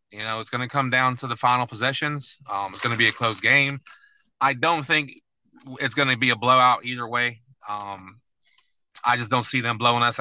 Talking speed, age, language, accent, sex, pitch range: 225 wpm, 20-39, English, American, male, 110-125 Hz